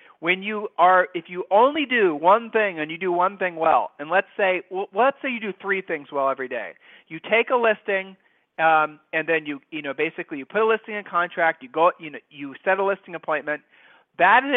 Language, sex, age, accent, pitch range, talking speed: English, male, 40-59, American, 160-205 Hz, 225 wpm